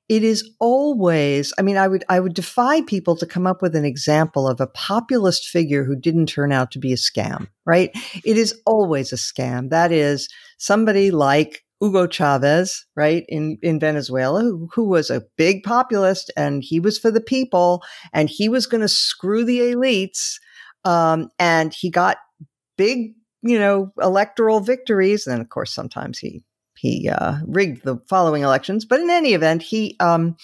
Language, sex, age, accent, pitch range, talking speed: English, female, 50-69, American, 150-215 Hz, 180 wpm